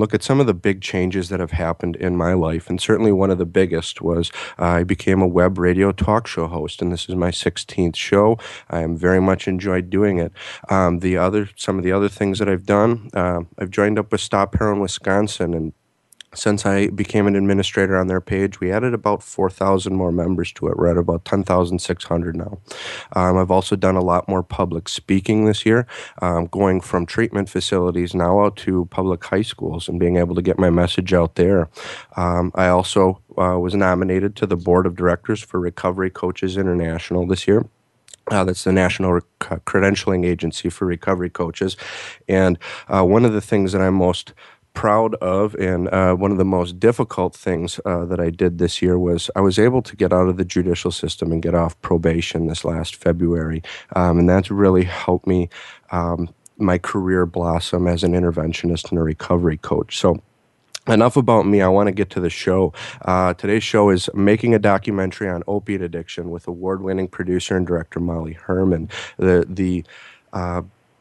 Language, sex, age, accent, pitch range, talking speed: English, male, 30-49, American, 90-100 Hz, 195 wpm